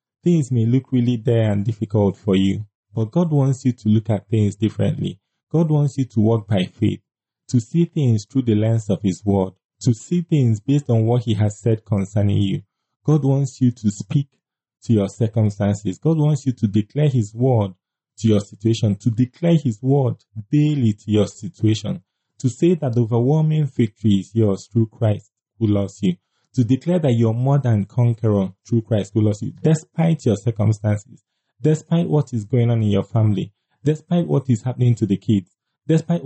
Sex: male